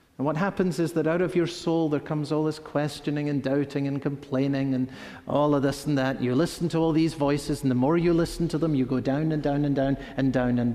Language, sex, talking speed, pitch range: English, male, 260 wpm, 160-250 Hz